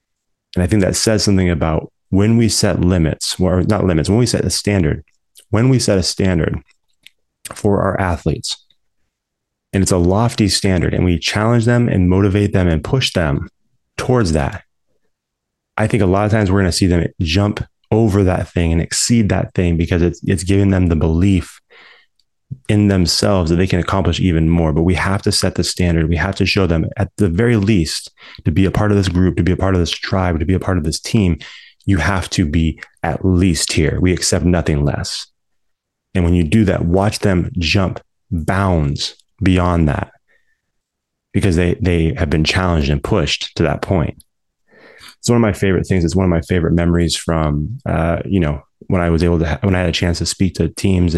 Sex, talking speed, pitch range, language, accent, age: male, 210 wpm, 85-100 Hz, English, American, 30-49